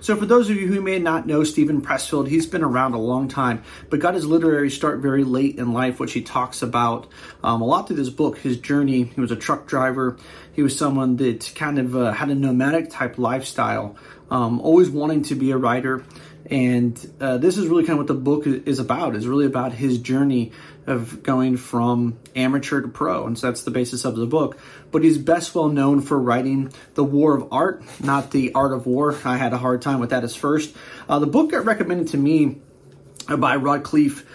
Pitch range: 130-150 Hz